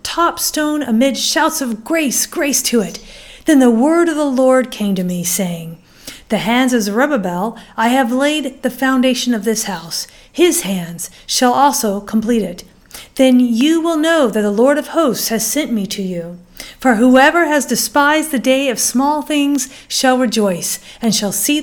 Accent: American